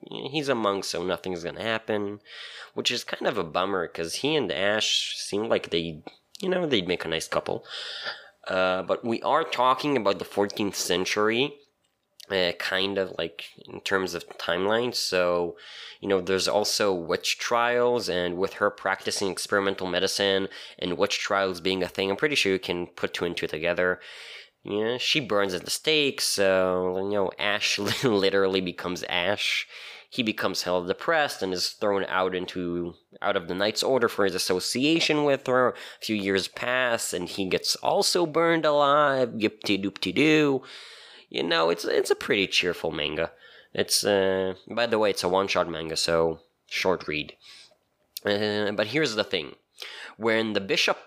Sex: male